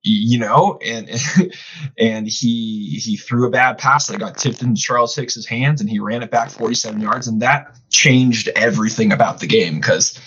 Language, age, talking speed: English, 20-39, 185 wpm